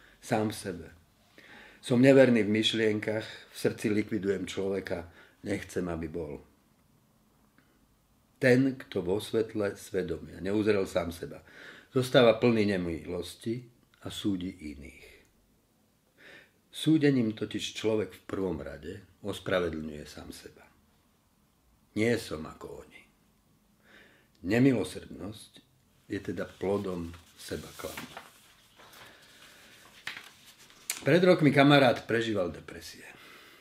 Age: 50-69